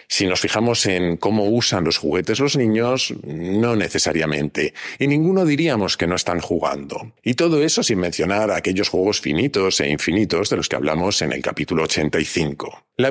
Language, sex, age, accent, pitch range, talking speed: Spanish, male, 50-69, Spanish, 95-135 Hz, 175 wpm